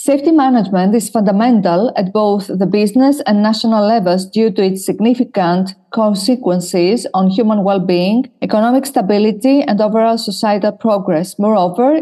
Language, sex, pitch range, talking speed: English, female, 195-240 Hz, 130 wpm